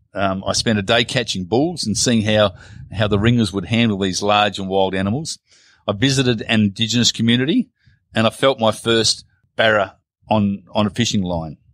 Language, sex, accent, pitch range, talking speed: English, male, Australian, 100-115 Hz, 185 wpm